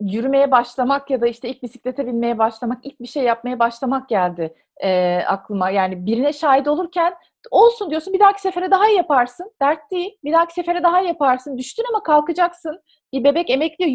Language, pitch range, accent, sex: Turkish, 235-335 Hz, native, female